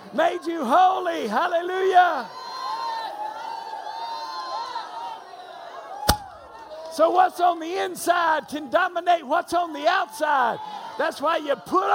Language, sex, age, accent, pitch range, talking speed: English, male, 50-69, American, 275-350 Hz, 95 wpm